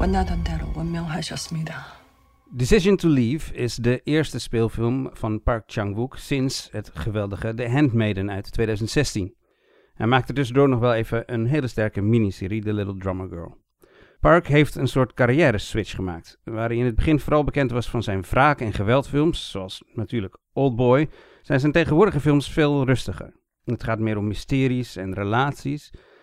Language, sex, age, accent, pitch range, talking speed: Dutch, male, 50-69, Dutch, 105-135 Hz, 155 wpm